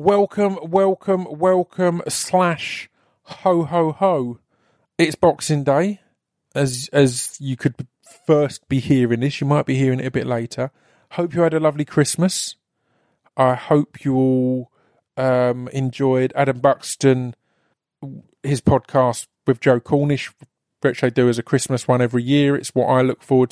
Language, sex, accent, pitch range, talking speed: English, male, British, 125-150 Hz, 150 wpm